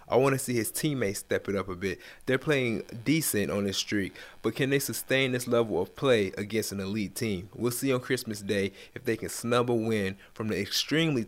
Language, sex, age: English, male, 20-39